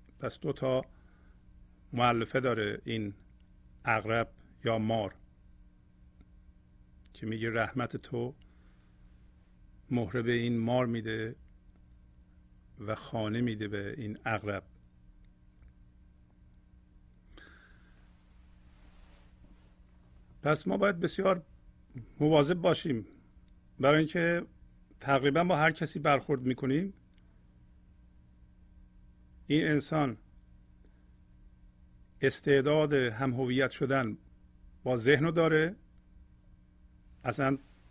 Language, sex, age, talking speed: Persian, male, 50-69, 75 wpm